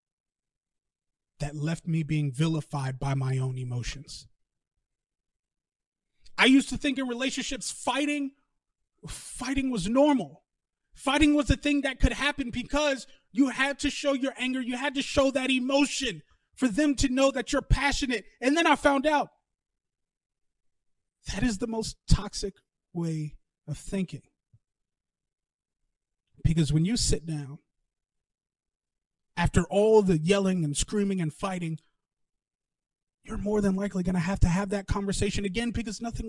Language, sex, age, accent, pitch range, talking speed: English, male, 30-49, American, 140-235 Hz, 140 wpm